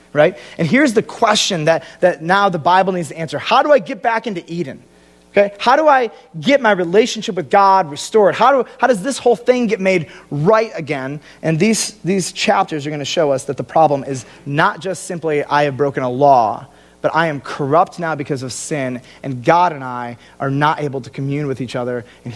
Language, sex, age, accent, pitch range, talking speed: English, male, 30-49, American, 135-175 Hz, 225 wpm